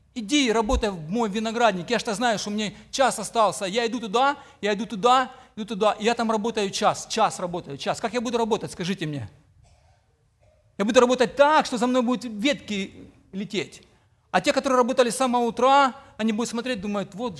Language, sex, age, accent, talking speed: Ukrainian, male, 40-59, native, 200 wpm